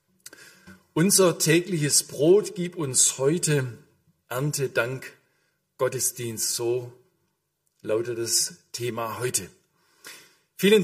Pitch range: 115-150 Hz